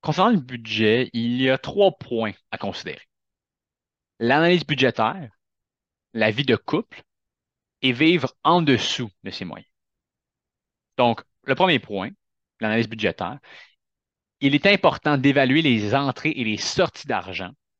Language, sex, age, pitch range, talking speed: French, male, 30-49, 115-150 Hz, 130 wpm